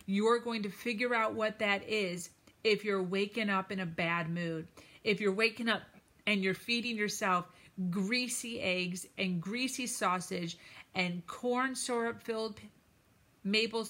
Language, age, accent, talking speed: English, 40-59, American, 145 wpm